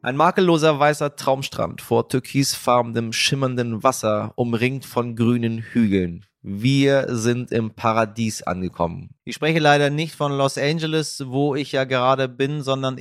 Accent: German